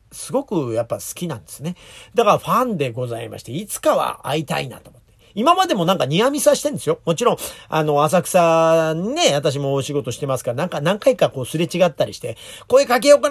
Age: 40-59